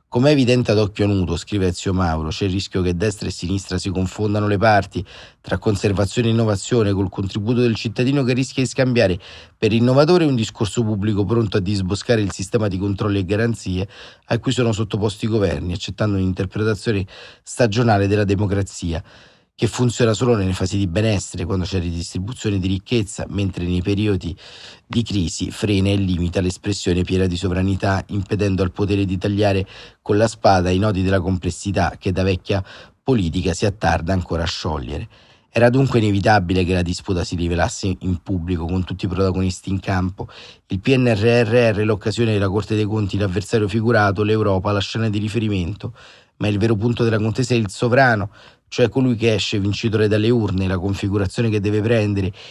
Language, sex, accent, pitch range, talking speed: Italian, male, native, 95-115 Hz, 175 wpm